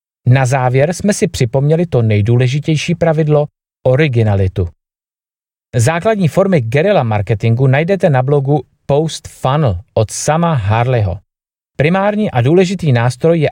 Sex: male